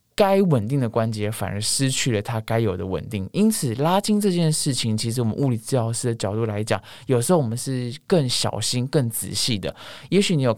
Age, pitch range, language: 20-39, 110-145 Hz, Chinese